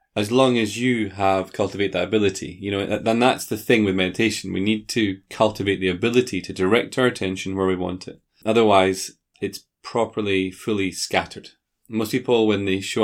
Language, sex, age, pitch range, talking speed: English, male, 20-39, 95-110 Hz, 185 wpm